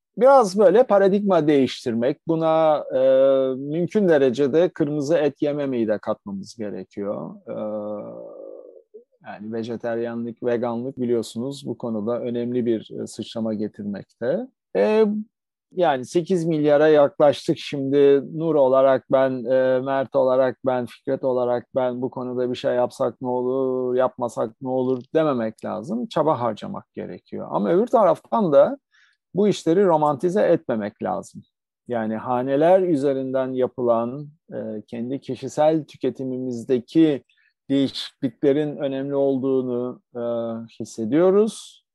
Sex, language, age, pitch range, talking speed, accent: male, Turkish, 40-59, 120-160 Hz, 110 wpm, native